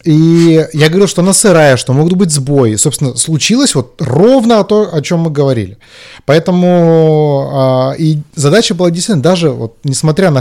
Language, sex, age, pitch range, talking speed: Russian, male, 30-49, 120-170 Hz, 165 wpm